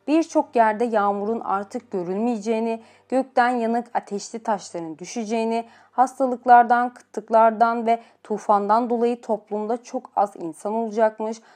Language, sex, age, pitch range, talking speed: Turkish, female, 30-49, 200-240 Hz, 105 wpm